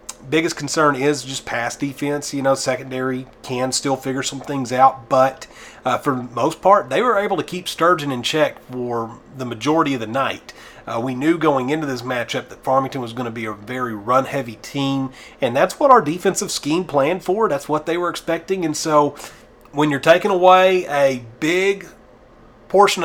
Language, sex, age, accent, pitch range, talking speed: English, male, 30-49, American, 125-150 Hz, 195 wpm